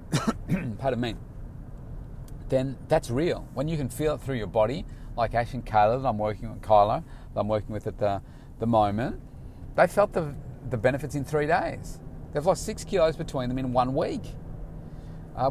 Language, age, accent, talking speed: English, 30-49, Australian, 190 wpm